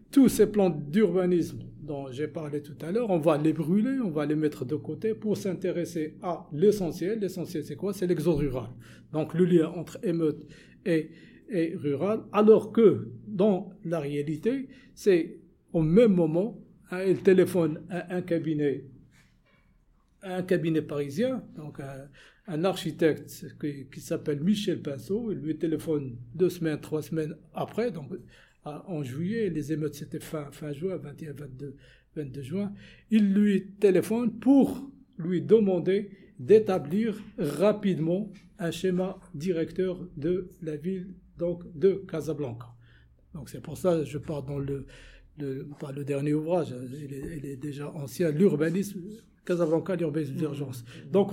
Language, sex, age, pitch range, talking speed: English, male, 60-79, 150-190 Hz, 150 wpm